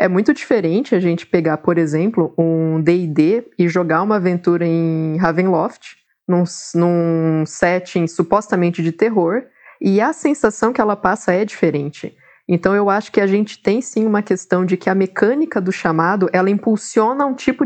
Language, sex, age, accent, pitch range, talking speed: Portuguese, female, 20-39, Brazilian, 175-220 Hz, 170 wpm